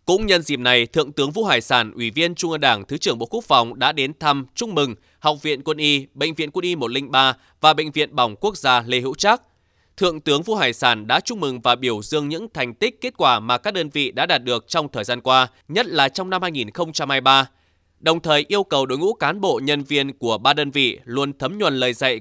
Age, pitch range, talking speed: 20-39, 130-165 Hz, 250 wpm